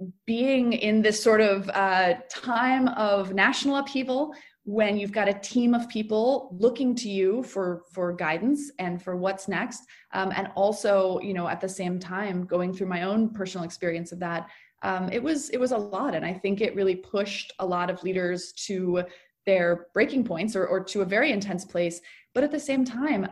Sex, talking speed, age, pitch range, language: female, 195 wpm, 20-39, 185-235 Hz, English